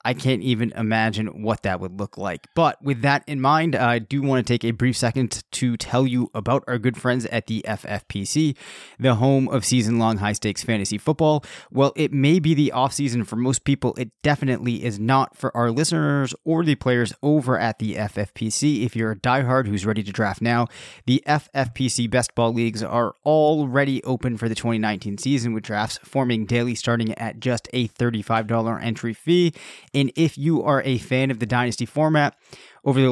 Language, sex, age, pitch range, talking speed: English, male, 20-39, 115-135 Hz, 190 wpm